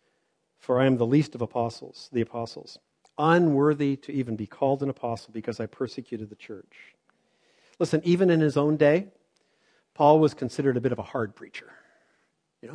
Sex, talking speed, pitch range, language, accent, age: male, 175 wpm, 125-160 Hz, English, American, 50-69